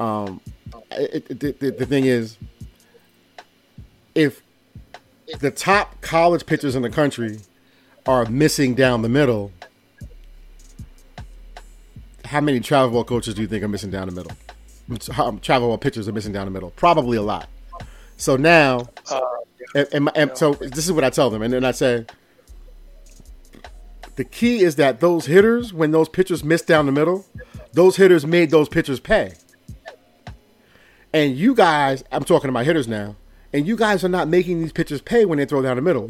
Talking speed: 180 wpm